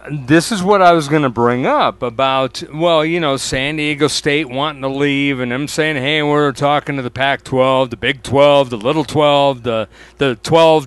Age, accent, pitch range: 50-69, American, 145-195 Hz